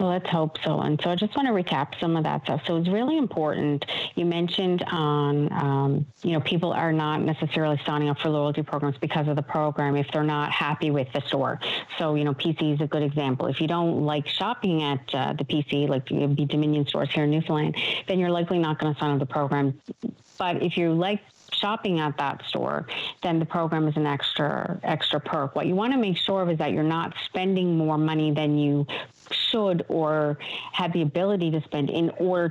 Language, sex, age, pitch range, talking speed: English, female, 40-59, 150-175 Hz, 225 wpm